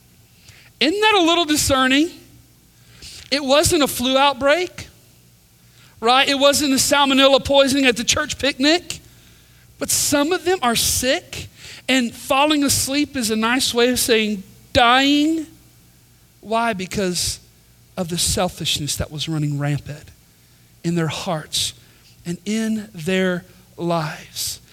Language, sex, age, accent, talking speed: English, male, 40-59, American, 125 wpm